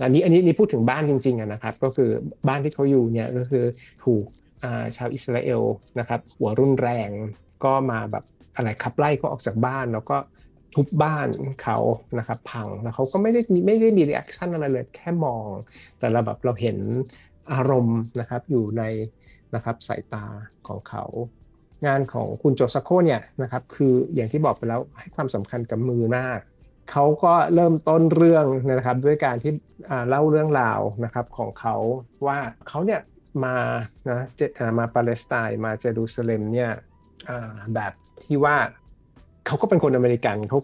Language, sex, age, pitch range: Thai, male, 60-79, 115-140 Hz